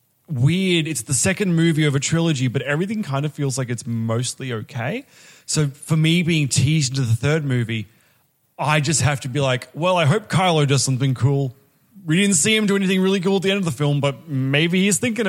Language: English